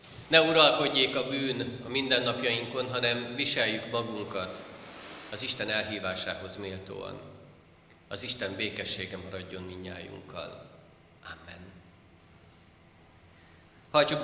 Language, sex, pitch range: Hungarian, male, 95-120 Hz